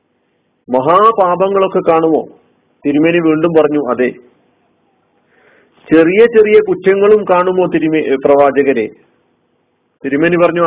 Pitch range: 150-195 Hz